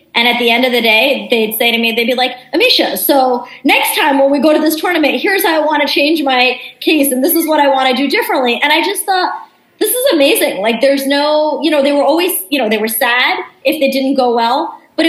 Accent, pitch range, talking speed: American, 215-275 Hz, 265 wpm